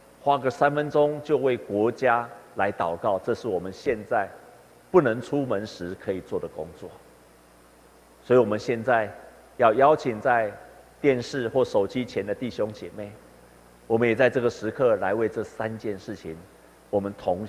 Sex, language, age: male, Chinese, 50-69